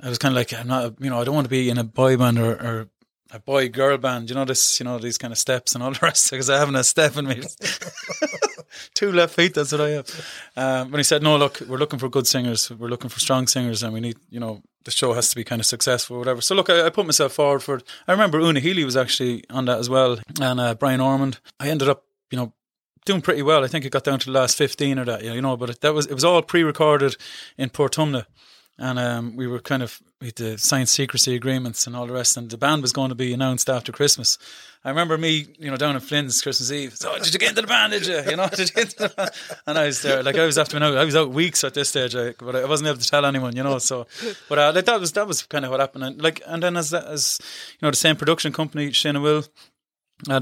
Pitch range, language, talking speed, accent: 125-150 Hz, English, 280 wpm, Irish